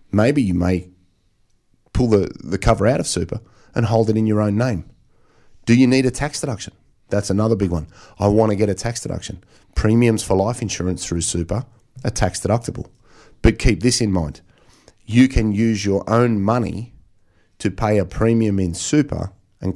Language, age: English, 30-49